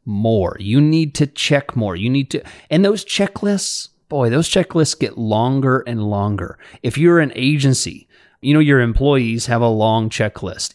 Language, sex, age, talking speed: English, male, 30-49, 175 wpm